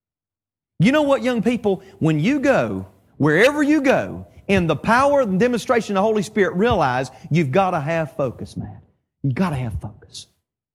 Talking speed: 180 wpm